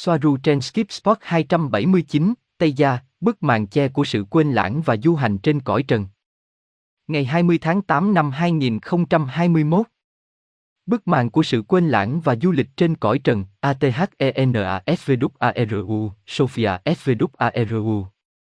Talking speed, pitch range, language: 125 wpm, 115-165 Hz, Vietnamese